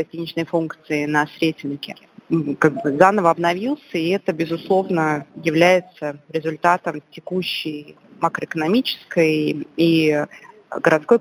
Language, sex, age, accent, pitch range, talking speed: Russian, female, 20-39, native, 150-170 Hz, 80 wpm